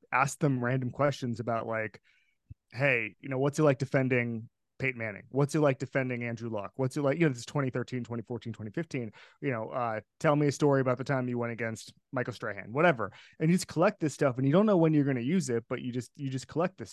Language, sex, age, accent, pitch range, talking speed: English, male, 20-39, American, 125-155 Hz, 250 wpm